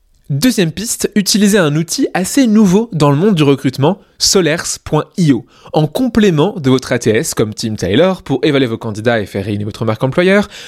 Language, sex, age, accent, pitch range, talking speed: French, male, 20-39, French, 125-180 Hz, 175 wpm